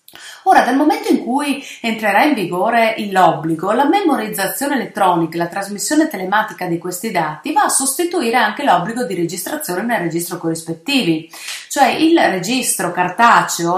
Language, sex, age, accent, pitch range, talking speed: Italian, female, 30-49, native, 180-270 Hz, 140 wpm